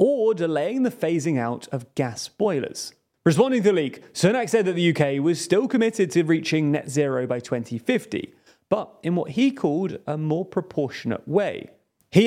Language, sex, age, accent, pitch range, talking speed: English, male, 30-49, British, 145-195 Hz, 175 wpm